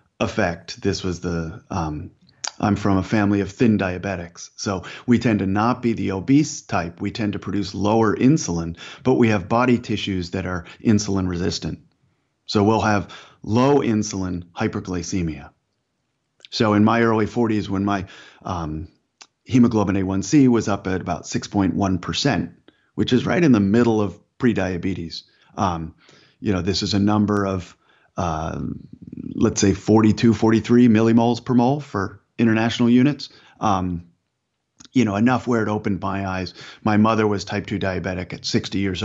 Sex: male